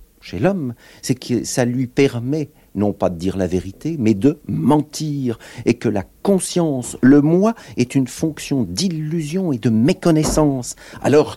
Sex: male